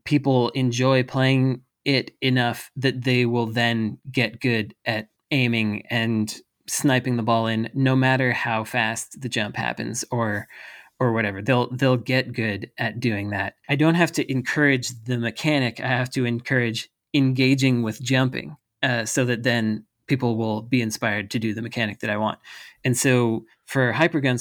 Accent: American